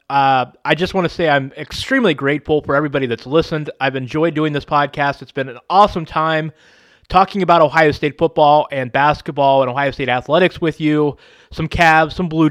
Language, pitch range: English, 140-165 Hz